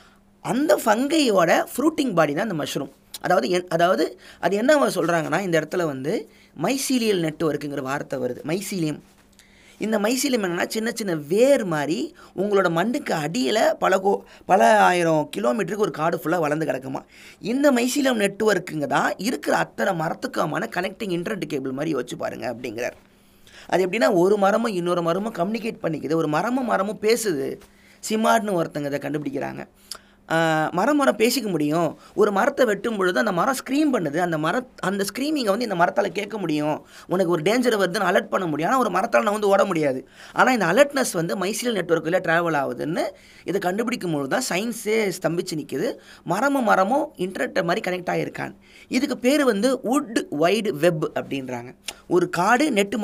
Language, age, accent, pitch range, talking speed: Tamil, 20-39, native, 165-235 Hz, 150 wpm